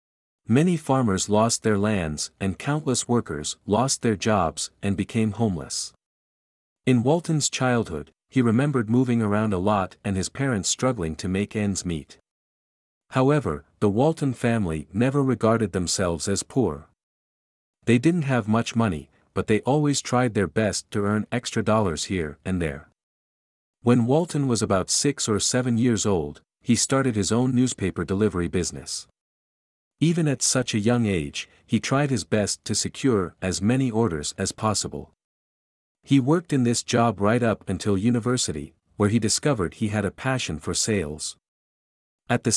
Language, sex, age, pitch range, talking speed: German, male, 50-69, 95-125 Hz, 155 wpm